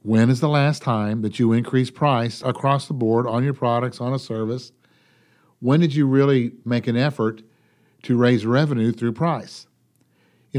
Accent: American